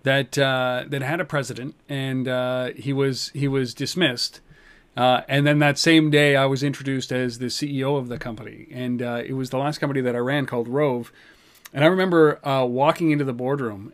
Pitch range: 135-165 Hz